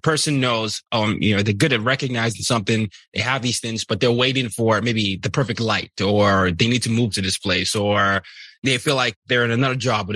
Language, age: English, 20-39